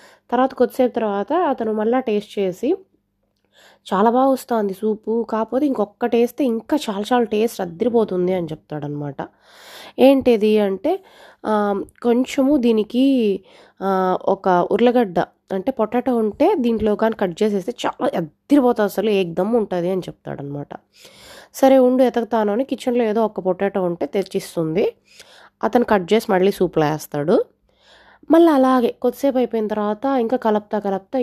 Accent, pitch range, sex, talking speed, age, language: native, 195-250 Hz, female, 125 wpm, 20-39, Telugu